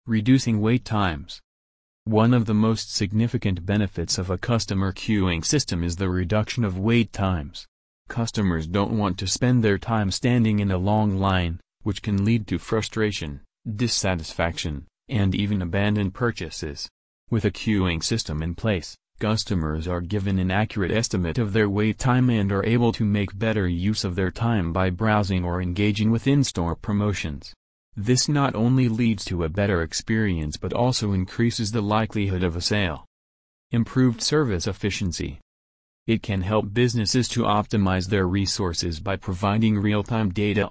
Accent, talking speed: American, 155 wpm